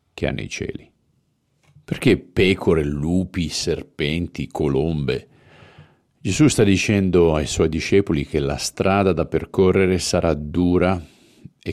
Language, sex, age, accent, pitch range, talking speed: Italian, male, 50-69, native, 75-95 Hz, 120 wpm